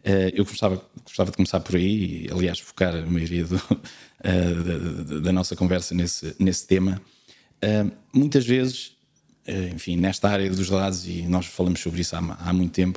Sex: male